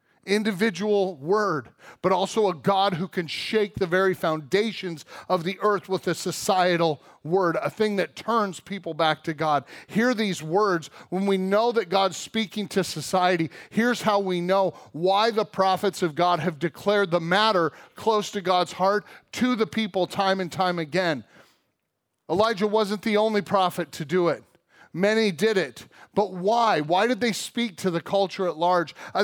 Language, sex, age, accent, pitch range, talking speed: English, male, 40-59, American, 180-220 Hz, 175 wpm